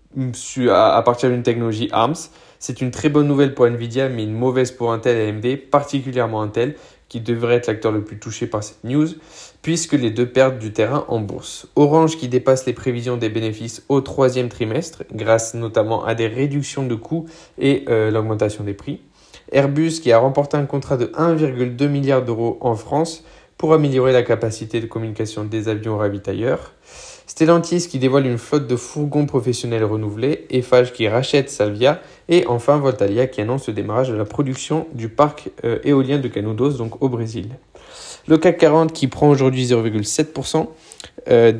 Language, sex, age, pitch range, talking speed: French, male, 20-39, 115-145 Hz, 175 wpm